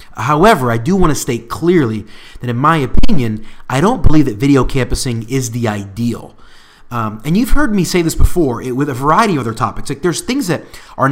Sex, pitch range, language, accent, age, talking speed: male, 120-155 Hz, English, American, 30-49, 215 wpm